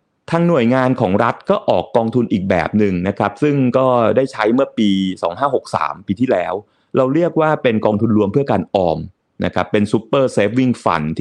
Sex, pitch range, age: male, 105-140 Hz, 30-49